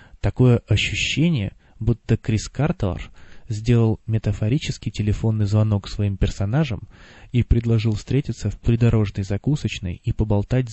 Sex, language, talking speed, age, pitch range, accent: male, Russian, 105 wpm, 20-39, 100-120 Hz, native